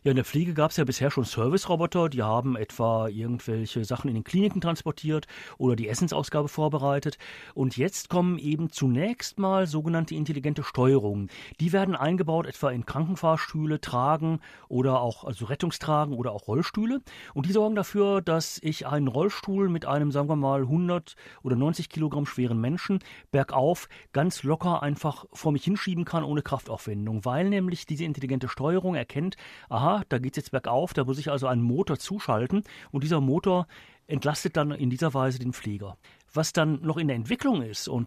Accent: German